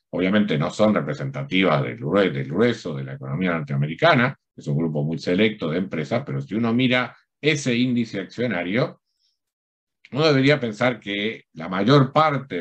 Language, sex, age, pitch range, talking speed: Spanish, male, 50-69, 90-130 Hz, 150 wpm